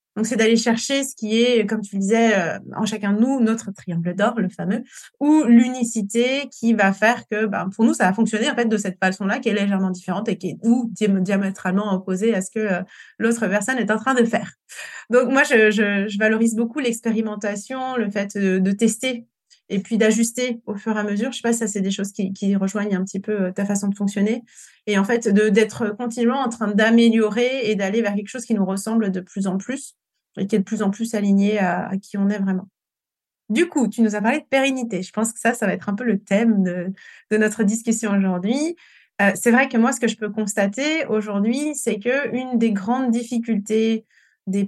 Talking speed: 230 wpm